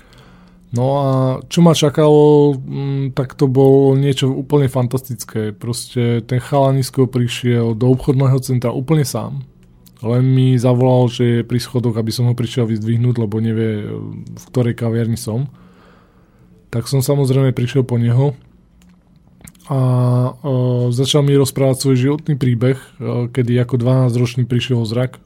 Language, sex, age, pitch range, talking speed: Slovak, male, 20-39, 120-135 Hz, 140 wpm